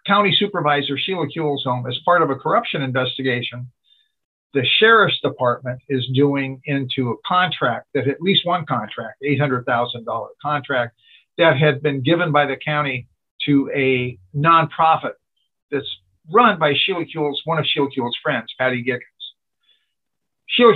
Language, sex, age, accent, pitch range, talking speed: English, male, 50-69, American, 130-165 Hz, 140 wpm